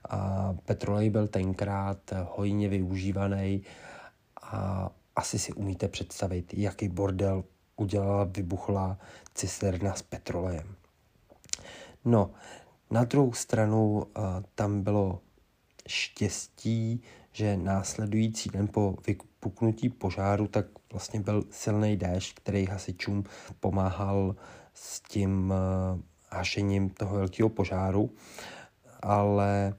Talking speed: 90 wpm